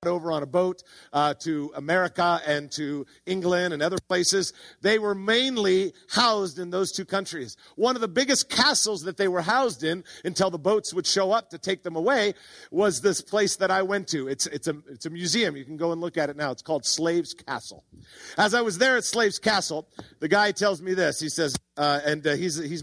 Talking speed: 220 wpm